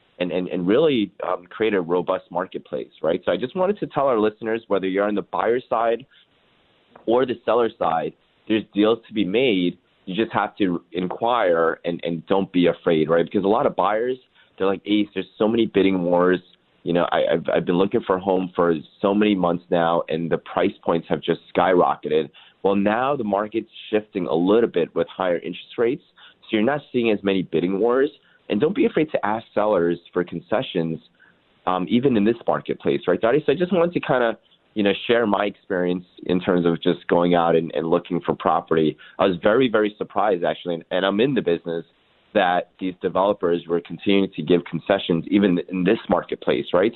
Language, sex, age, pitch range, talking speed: English, male, 30-49, 85-105 Hz, 205 wpm